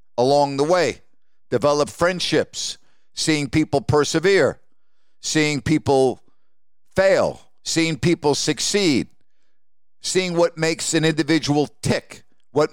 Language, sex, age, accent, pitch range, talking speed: English, male, 50-69, American, 135-175 Hz, 100 wpm